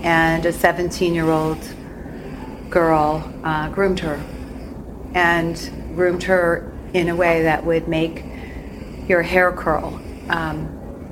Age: 40-59